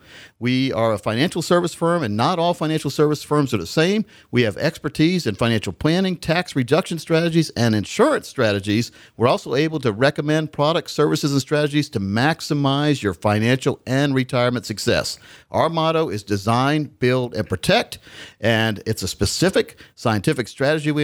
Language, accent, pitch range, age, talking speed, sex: English, American, 115-155 Hz, 50-69, 165 wpm, male